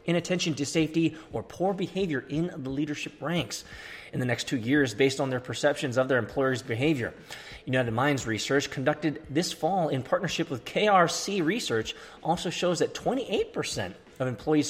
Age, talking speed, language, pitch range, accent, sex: 20-39, 165 wpm, English, 115-155 Hz, American, male